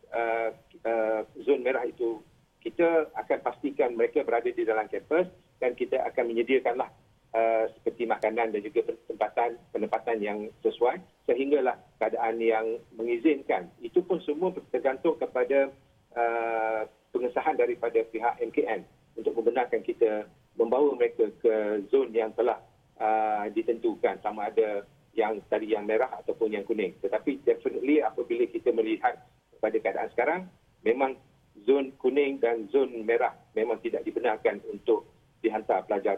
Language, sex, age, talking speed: Malay, male, 40-59, 135 wpm